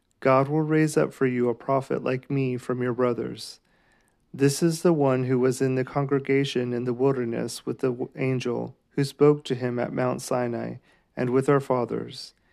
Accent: American